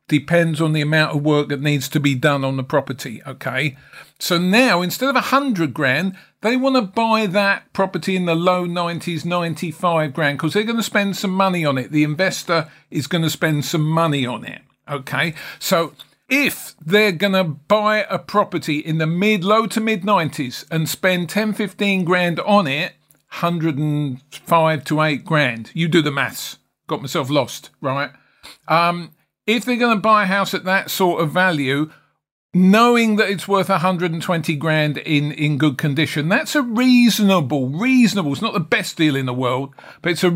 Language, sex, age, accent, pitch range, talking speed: English, male, 50-69, British, 155-200 Hz, 185 wpm